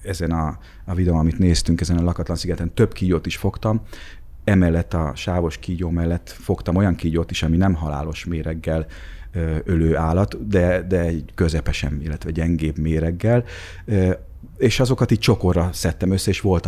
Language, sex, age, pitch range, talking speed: Hungarian, male, 30-49, 85-105 Hz, 145 wpm